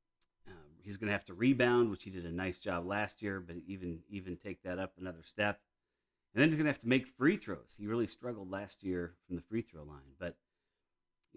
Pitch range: 90-110 Hz